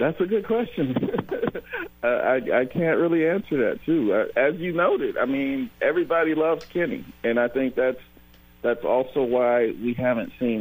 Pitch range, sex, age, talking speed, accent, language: 85-120 Hz, male, 50-69, 165 wpm, American, English